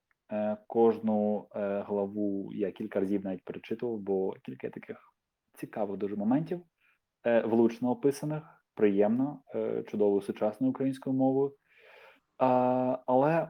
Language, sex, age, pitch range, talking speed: Ukrainian, male, 20-39, 100-120 Hz, 95 wpm